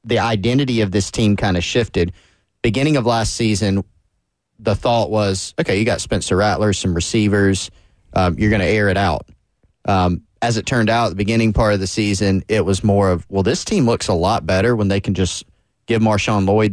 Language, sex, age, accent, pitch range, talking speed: English, male, 30-49, American, 95-110 Hz, 210 wpm